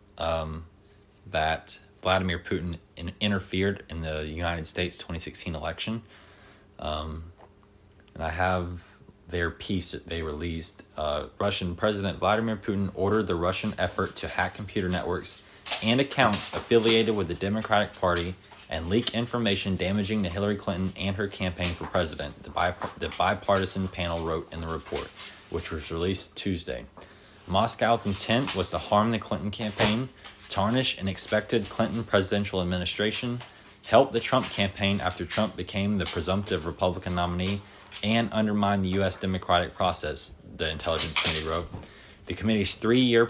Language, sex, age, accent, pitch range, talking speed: English, male, 20-39, American, 90-105 Hz, 140 wpm